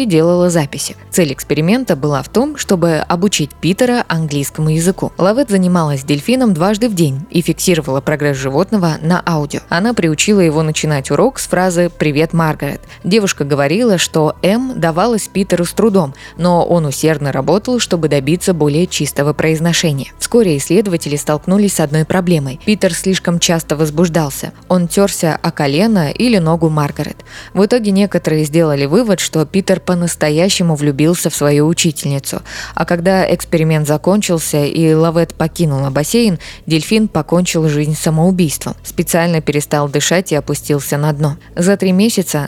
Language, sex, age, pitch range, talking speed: Russian, female, 20-39, 155-185 Hz, 145 wpm